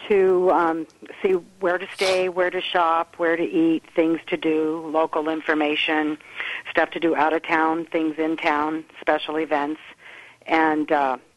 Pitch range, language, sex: 160-190 Hz, English, female